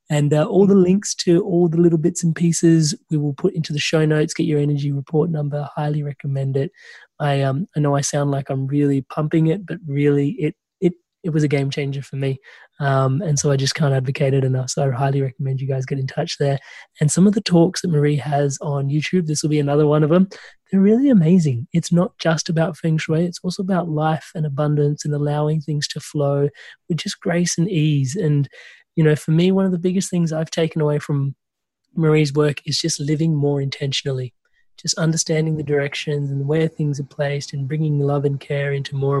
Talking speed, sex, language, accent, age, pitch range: 225 wpm, male, English, Australian, 20-39, 140-160 Hz